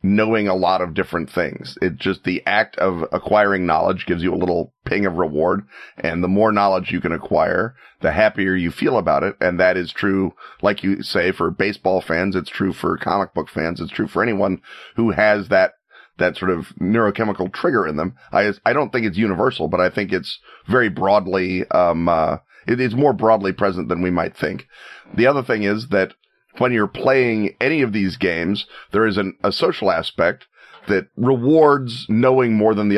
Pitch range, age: 90-110 Hz, 40-59